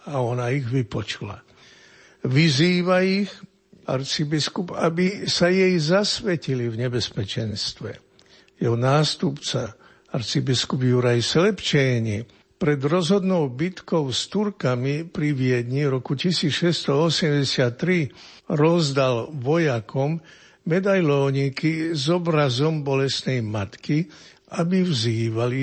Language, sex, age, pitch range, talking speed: Slovak, male, 60-79, 120-160 Hz, 85 wpm